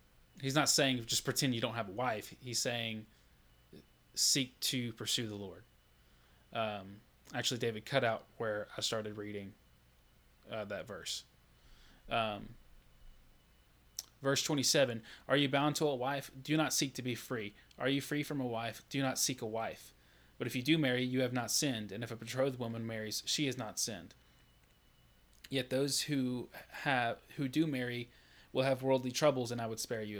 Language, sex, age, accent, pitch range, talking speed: English, male, 20-39, American, 110-135 Hz, 175 wpm